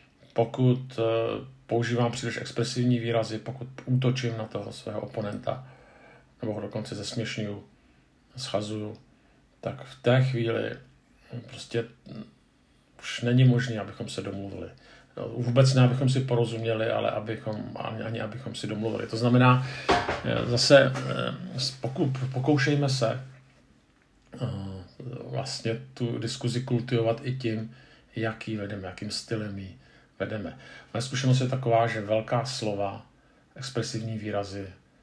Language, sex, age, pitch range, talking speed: Czech, male, 50-69, 110-130 Hz, 115 wpm